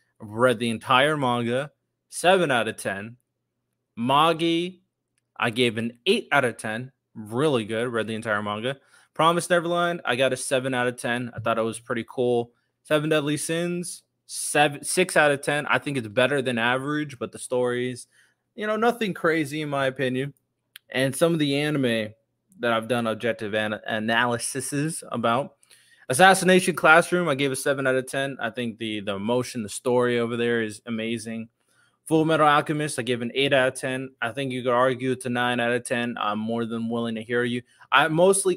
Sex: male